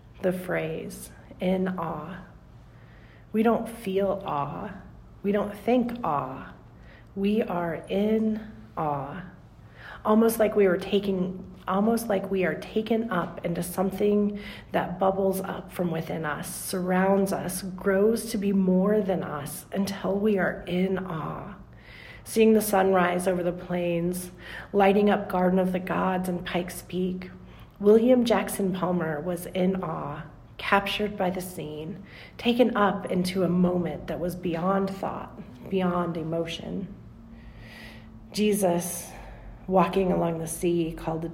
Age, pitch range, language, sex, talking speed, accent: 40-59, 170-200 Hz, English, female, 130 wpm, American